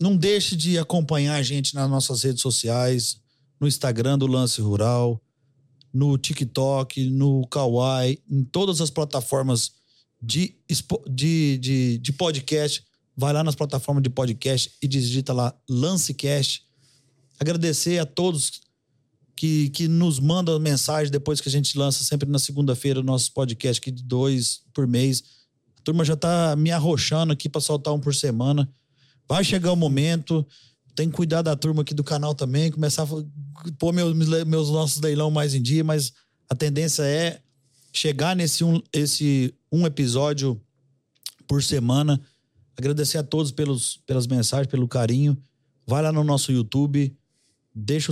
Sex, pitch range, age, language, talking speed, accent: male, 130-150 Hz, 40-59, Portuguese, 150 wpm, Brazilian